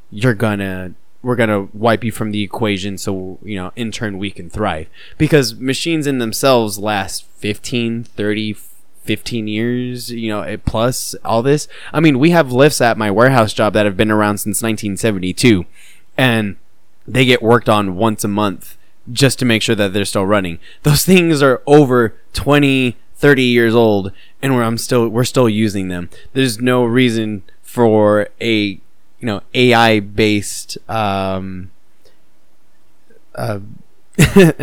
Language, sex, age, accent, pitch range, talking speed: English, male, 20-39, American, 105-130 Hz, 150 wpm